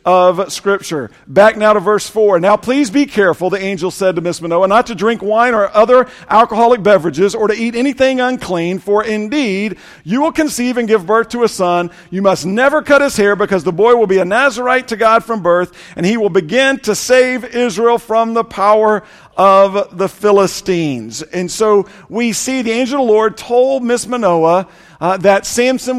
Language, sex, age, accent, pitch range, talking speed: English, male, 50-69, American, 190-235 Hz, 195 wpm